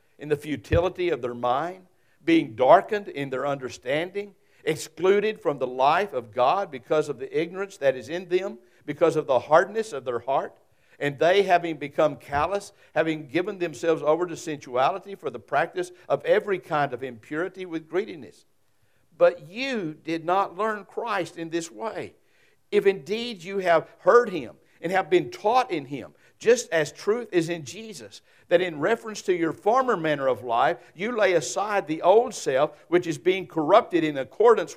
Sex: male